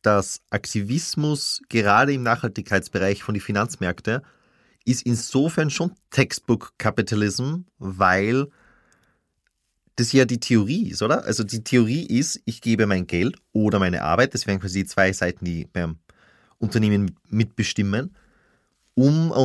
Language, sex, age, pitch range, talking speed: German, male, 30-49, 100-130 Hz, 130 wpm